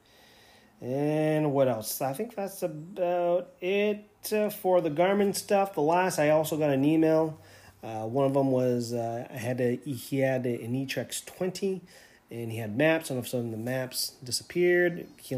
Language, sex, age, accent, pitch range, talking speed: English, male, 30-49, American, 120-145 Hz, 185 wpm